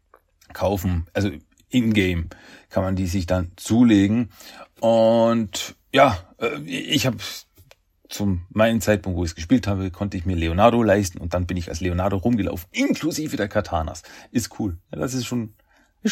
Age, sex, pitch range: 40-59, male, 90-120 Hz